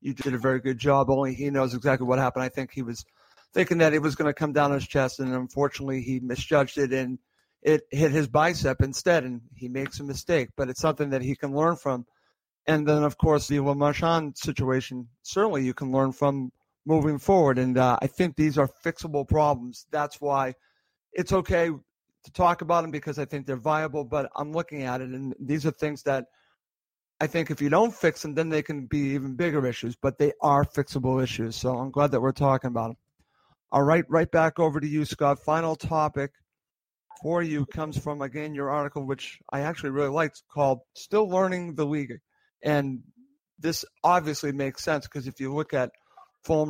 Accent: American